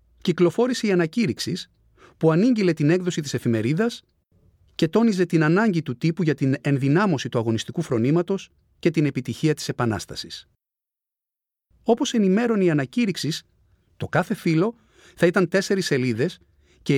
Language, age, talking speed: Greek, 40-59, 135 wpm